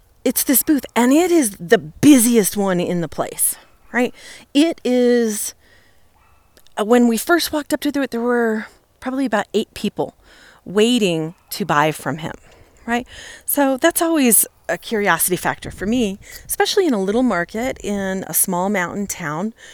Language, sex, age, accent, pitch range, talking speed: English, female, 30-49, American, 180-255 Hz, 160 wpm